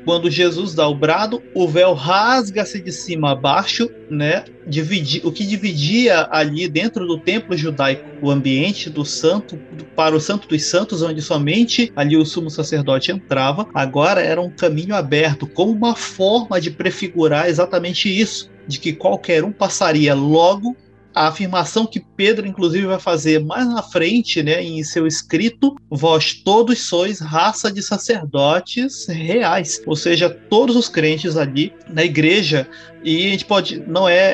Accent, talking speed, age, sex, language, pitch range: Brazilian, 155 wpm, 30-49, male, Portuguese, 155-195 Hz